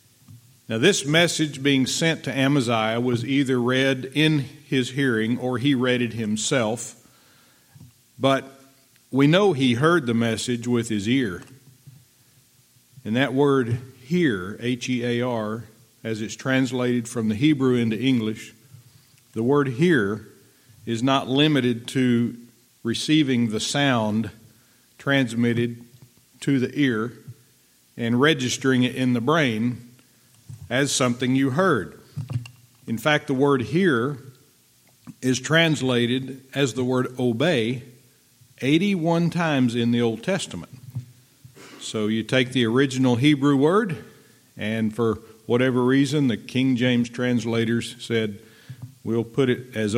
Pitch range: 120-135 Hz